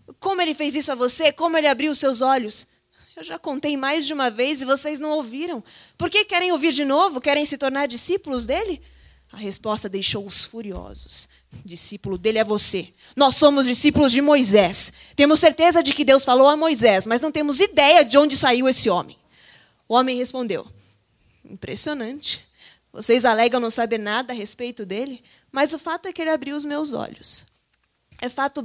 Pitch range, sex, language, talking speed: 220-290 Hz, female, Portuguese, 185 wpm